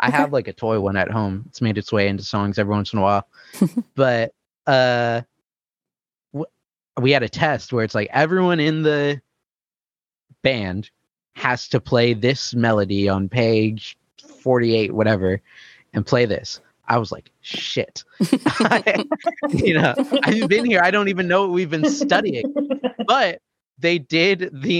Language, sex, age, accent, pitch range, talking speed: English, male, 30-49, American, 110-150 Hz, 160 wpm